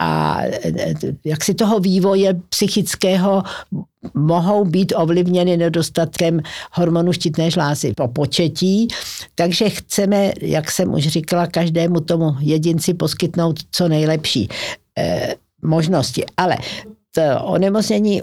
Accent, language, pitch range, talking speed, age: native, Czech, 160-190 Hz, 100 wpm, 60-79